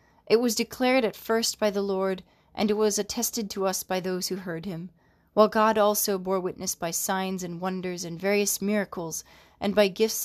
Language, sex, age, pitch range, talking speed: English, female, 30-49, 185-215 Hz, 200 wpm